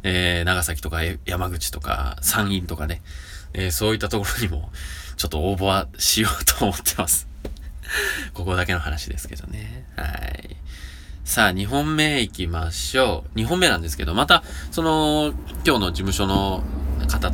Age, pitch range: 20-39, 75-105 Hz